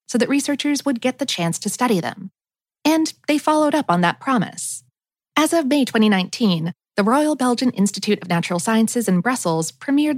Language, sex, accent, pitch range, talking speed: English, female, American, 185-270 Hz, 185 wpm